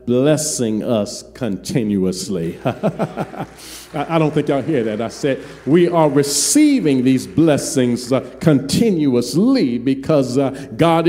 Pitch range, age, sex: 130-185 Hz, 50-69, male